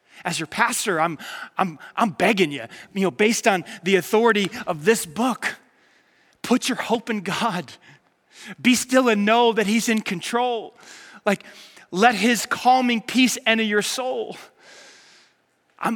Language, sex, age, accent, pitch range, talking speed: English, male, 30-49, American, 190-245 Hz, 145 wpm